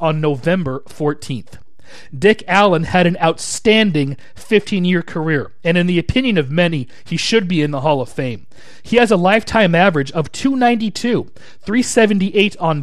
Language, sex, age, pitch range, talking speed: English, male, 40-59, 160-205 Hz, 155 wpm